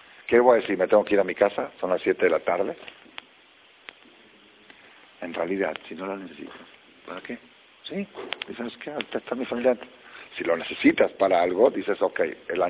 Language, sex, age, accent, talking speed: Spanish, male, 50-69, Spanish, 185 wpm